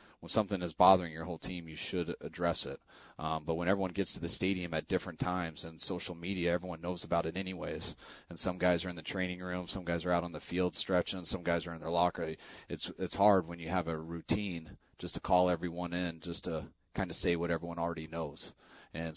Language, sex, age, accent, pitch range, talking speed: English, male, 30-49, American, 80-90 Hz, 235 wpm